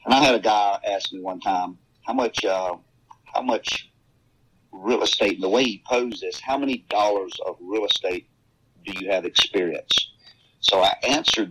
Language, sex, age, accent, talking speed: English, male, 50-69, American, 180 wpm